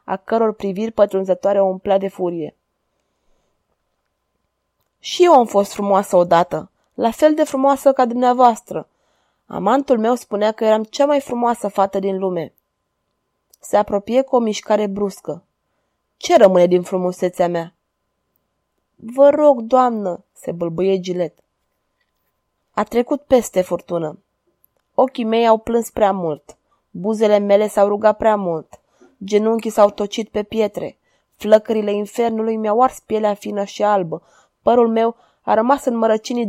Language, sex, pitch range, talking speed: Romanian, female, 195-235 Hz, 135 wpm